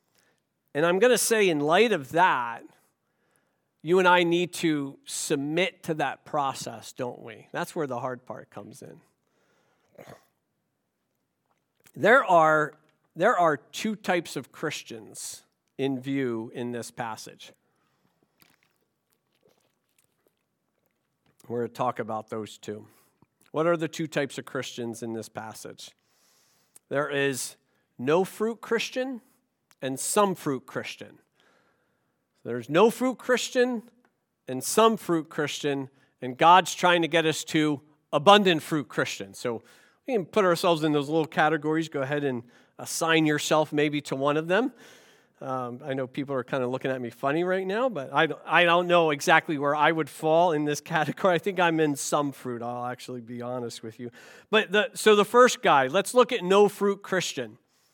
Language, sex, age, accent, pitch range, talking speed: English, male, 50-69, American, 130-185 Hz, 160 wpm